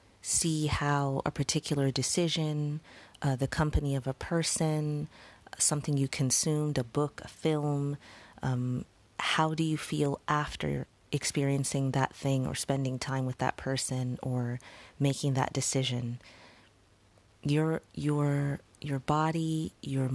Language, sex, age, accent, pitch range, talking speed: English, female, 30-49, American, 130-145 Hz, 125 wpm